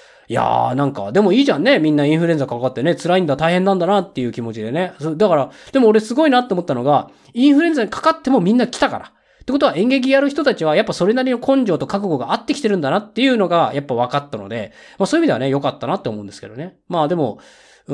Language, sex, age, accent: Japanese, male, 20-39, native